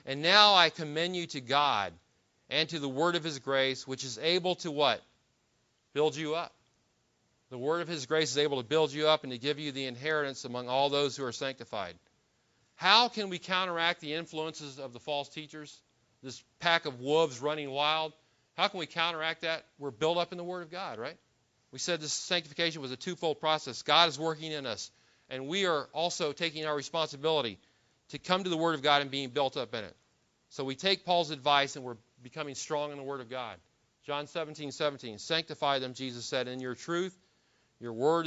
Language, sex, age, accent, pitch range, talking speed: English, male, 40-59, American, 130-160 Hz, 210 wpm